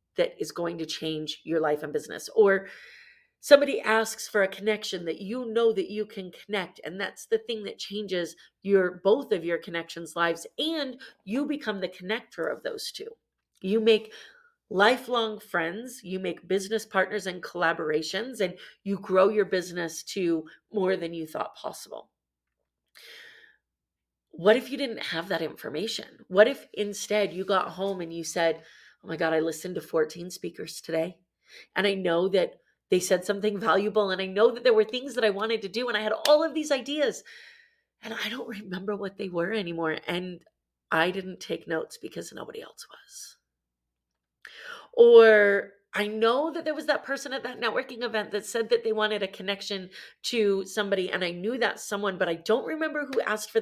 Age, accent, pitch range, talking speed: 40-59, American, 170-225 Hz, 185 wpm